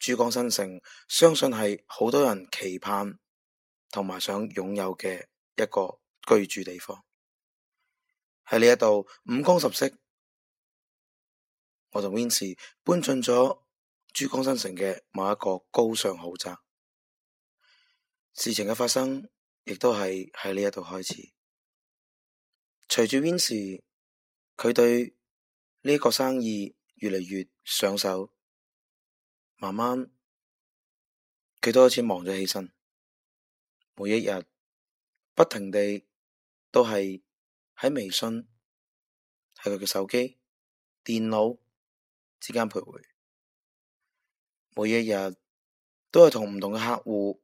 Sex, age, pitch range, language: male, 20-39, 95-120 Hz, Chinese